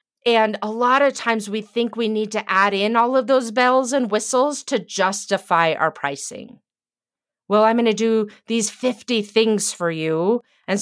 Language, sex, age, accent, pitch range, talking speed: English, female, 30-49, American, 195-245 Hz, 185 wpm